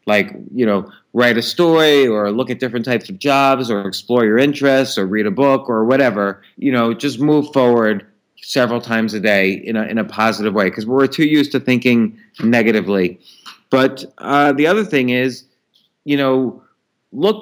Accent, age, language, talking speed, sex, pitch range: American, 30-49, English, 185 wpm, male, 120-155 Hz